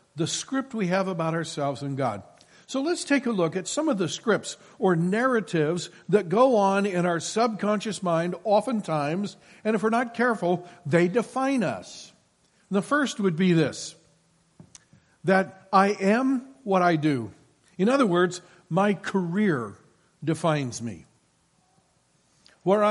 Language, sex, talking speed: English, male, 145 wpm